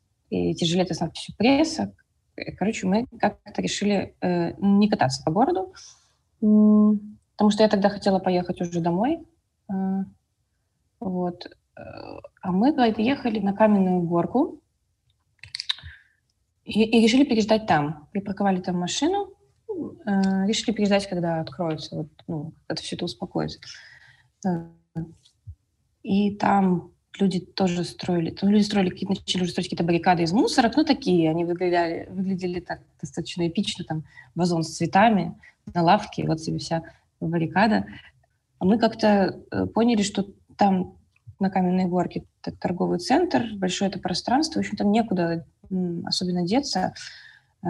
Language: Russian